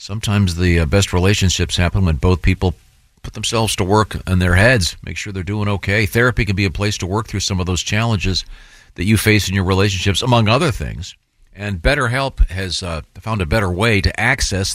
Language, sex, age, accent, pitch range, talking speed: English, male, 50-69, American, 90-110 Hz, 210 wpm